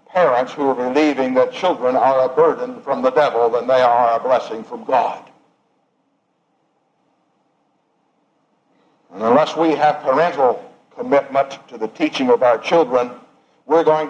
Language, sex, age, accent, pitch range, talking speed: English, male, 60-79, American, 135-210 Hz, 140 wpm